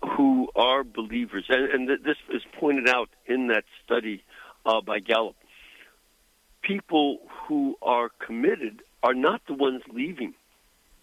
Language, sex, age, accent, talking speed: English, male, 60-79, American, 130 wpm